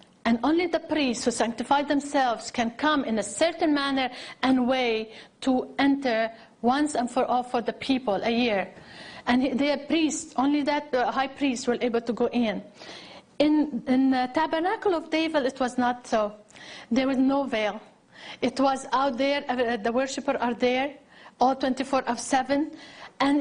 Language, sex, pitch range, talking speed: English, female, 225-280 Hz, 165 wpm